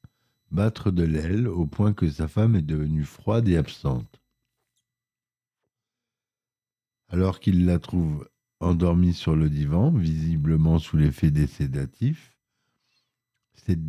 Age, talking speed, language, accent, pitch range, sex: 50-69, 115 wpm, French, French, 80-110 Hz, male